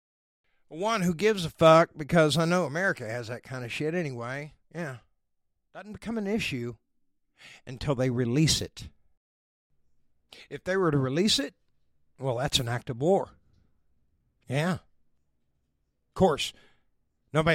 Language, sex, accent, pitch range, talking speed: English, male, American, 115-165 Hz, 135 wpm